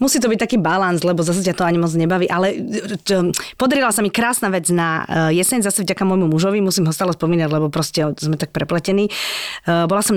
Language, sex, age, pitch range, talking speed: Slovak, female, 30-49, 165-200 Hz, 205 wpm